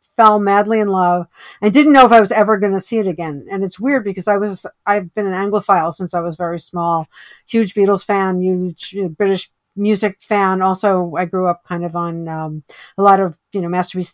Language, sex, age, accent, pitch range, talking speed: English, female, 50-69, American, 175-205 Hz, 220 wpm